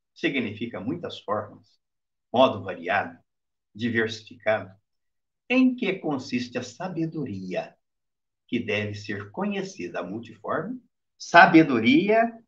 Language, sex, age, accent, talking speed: Portuguese, male, 60-79, Brazilian, 85 wpm